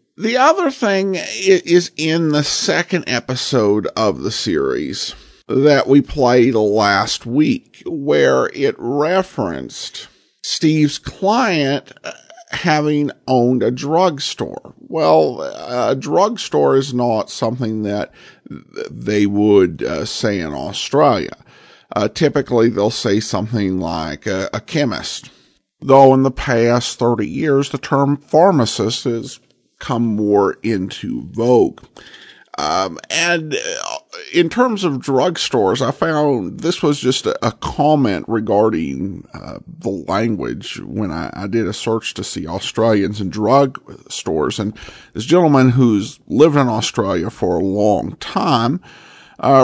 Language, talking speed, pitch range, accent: English, 120 wpm, 110-160 Hz, American